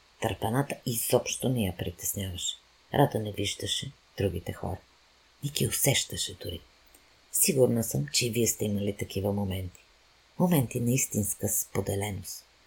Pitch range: 95-125 Hz